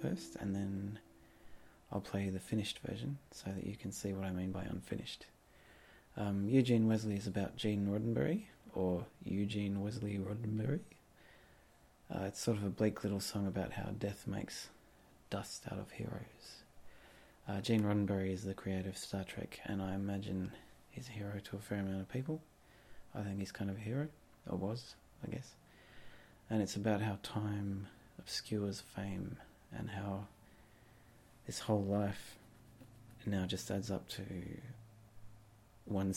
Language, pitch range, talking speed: English, 95-110 Hz, 160 wpm